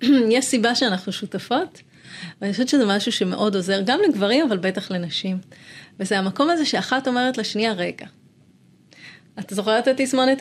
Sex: female